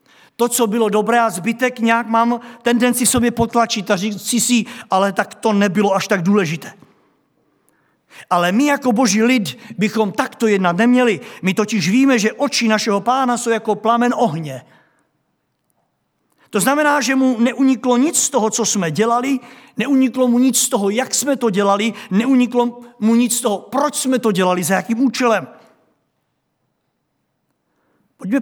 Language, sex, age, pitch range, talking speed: Czech, male, 50-69, 170-235 Hz, 155 wpm